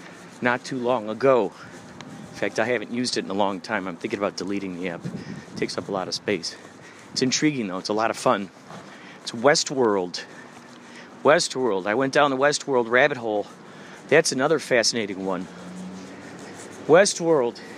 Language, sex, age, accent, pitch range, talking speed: English, male, 40-59, American, 125-175 Hz, 170 wpm